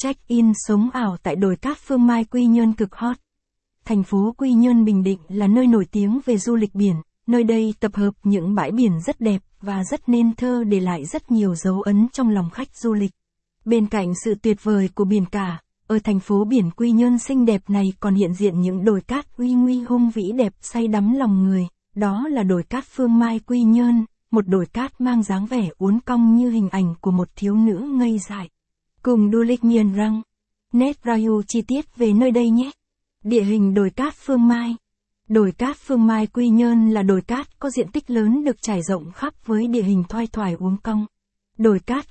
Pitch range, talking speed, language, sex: 200-240 Hz, 215 wpm, Vietnamese, female